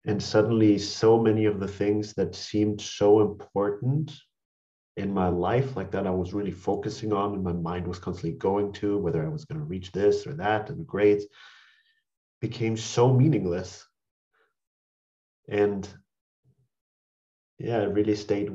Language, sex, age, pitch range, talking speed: English, male, 40-59, 90-110 Hz, 155 wpm